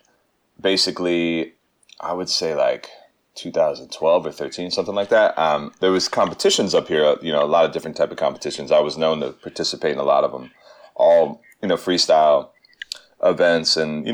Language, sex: English, male